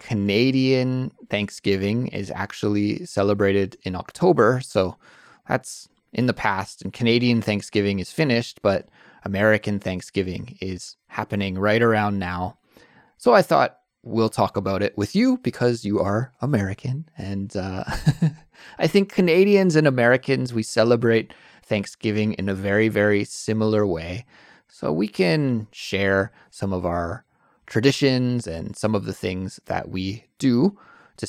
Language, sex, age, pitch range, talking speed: English, male, 20-39, 100-125 Hz, 135 wpm